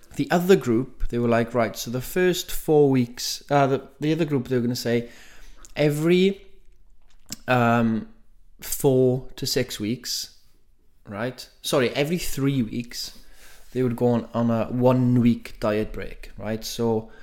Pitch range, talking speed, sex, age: 110-125 Hz, 155 wpm, male, 30-49